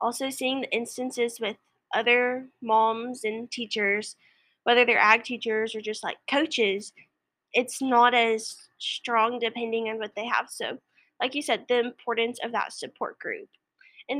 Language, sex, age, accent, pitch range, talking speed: English, female, 10-29, American, 220-250 Hz, 155 wpm